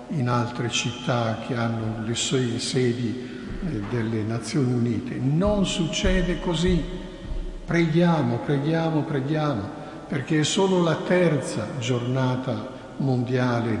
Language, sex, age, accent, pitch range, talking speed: Italian, male, 60-79, native, 120-155 Hz, 110 wpm